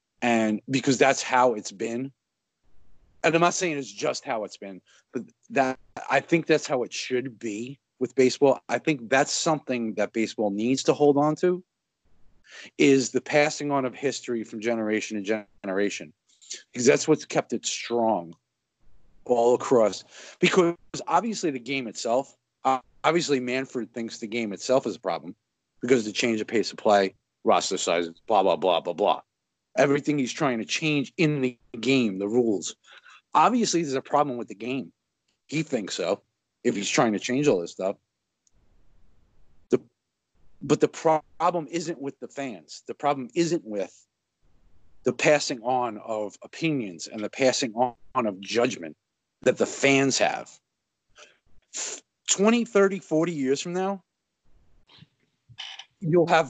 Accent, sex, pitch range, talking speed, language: American, male, 110-150 Hz, 155 wpm, English